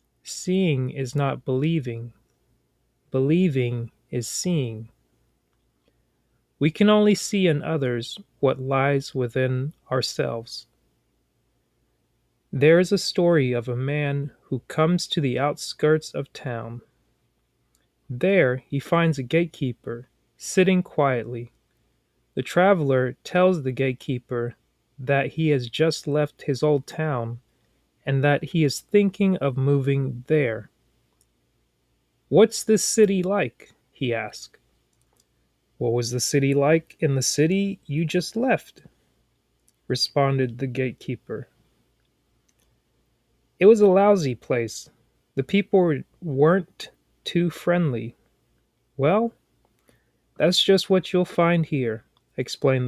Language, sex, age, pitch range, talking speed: English, male, 30-49, 120-165 Hz, 110 wpm